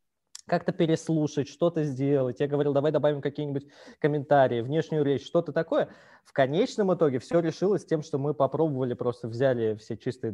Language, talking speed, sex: Russian, 155 wpm, male